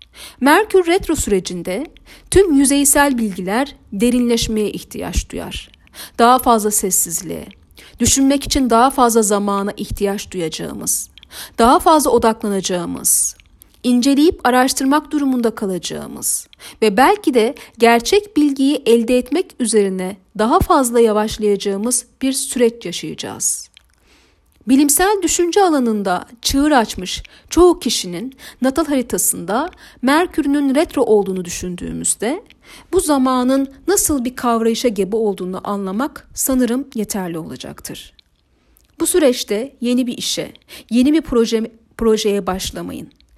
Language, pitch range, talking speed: Turkish, 205-280 Hz, 100 wpm